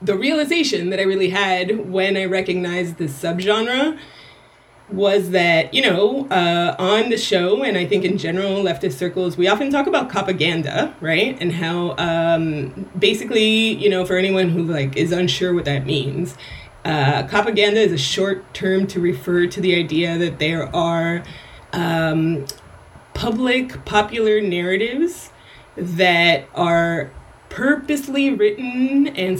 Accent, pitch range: American, 170-210 Hz